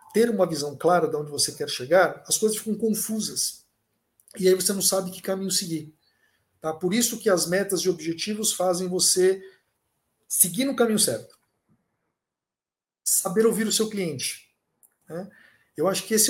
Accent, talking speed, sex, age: Brazilian, 165 wpm, male, 50-69